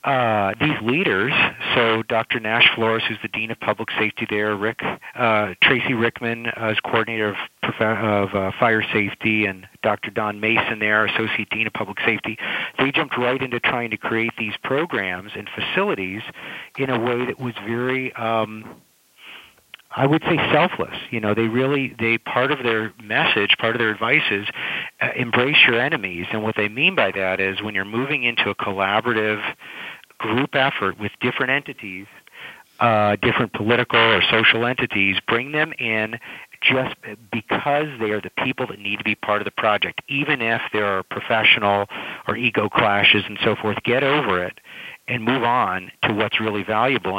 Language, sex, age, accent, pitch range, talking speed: English, male, 40-59, American, 105-120 Hz, 175 wpm